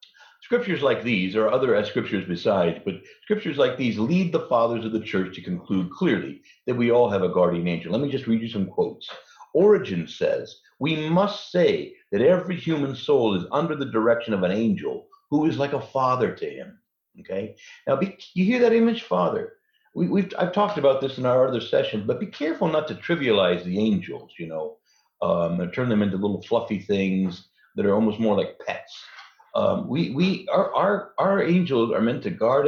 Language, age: English, 60-79